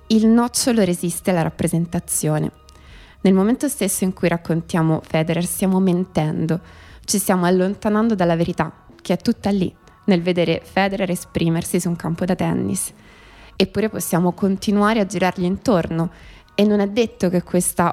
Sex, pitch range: female, 170-200 Hz